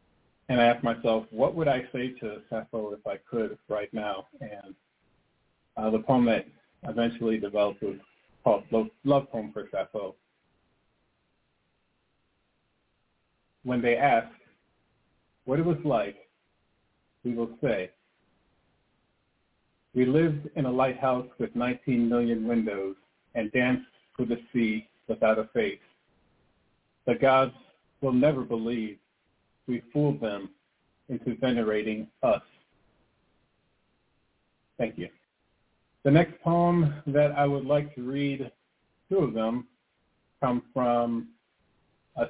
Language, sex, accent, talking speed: English, male, American, 120 wpm